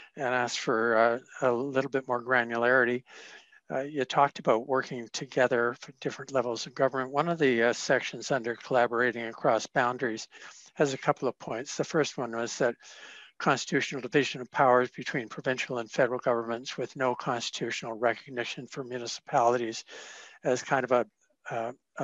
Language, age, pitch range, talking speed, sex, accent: English, 60-79, 120-140 Hz, 160 wpm, male, American